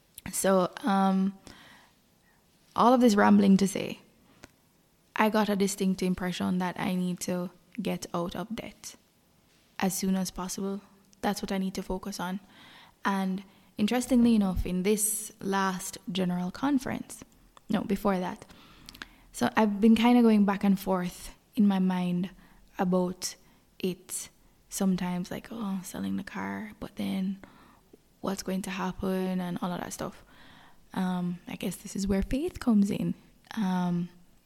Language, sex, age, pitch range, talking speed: English, female, 10-29, 185-215 Hz, 145 wpm